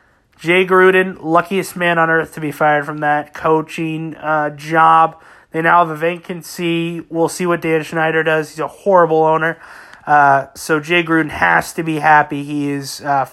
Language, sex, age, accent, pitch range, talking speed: English, male, 30-49, American, 150-180 Hz, 180 wpm